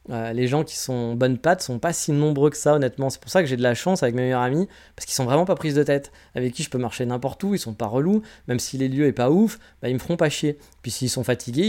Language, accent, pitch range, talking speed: French, French, 125-155 Hz, 320 wpm